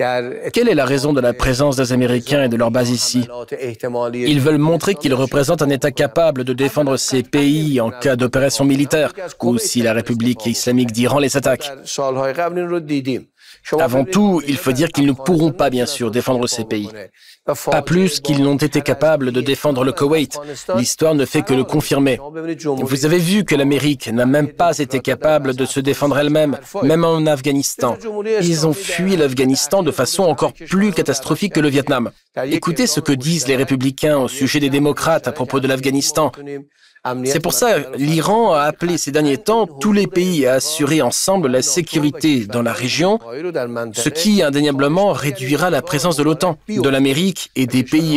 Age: 40-59